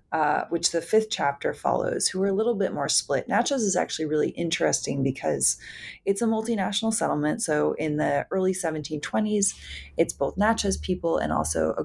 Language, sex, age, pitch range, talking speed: English, female, 30-49, 150-200 Hz, 175 wpm